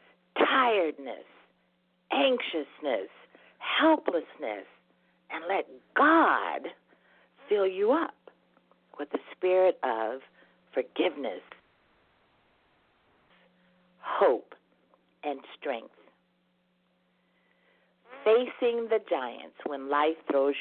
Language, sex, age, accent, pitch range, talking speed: English, female, 50-69, American, 140-195 Hz, 65 wpm